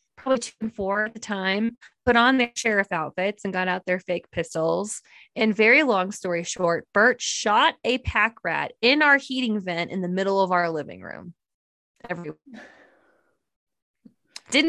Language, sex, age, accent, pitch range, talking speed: English, female, 20-39, American, 180-235 Hz, 155 wpm